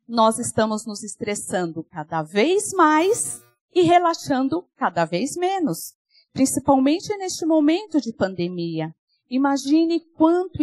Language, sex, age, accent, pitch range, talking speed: Portuguese, female, 40-59, Brazilian, 220-300 Hz, 105 wpm